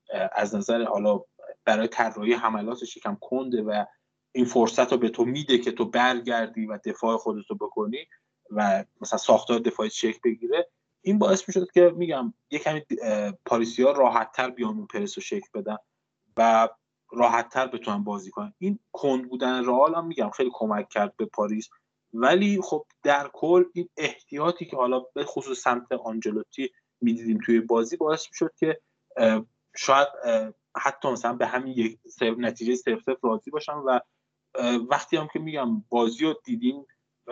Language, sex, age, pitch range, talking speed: Persian, male, 20-39, 115-150 Hz, 155 wpm